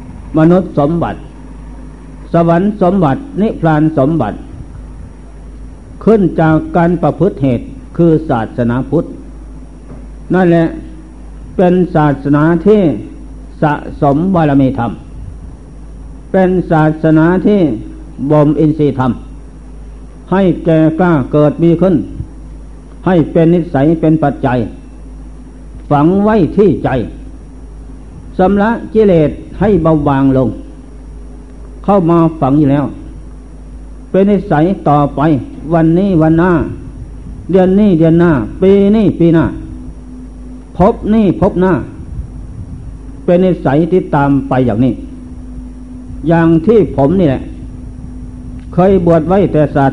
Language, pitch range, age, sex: Thai, 130-175 Hz, 60-79, male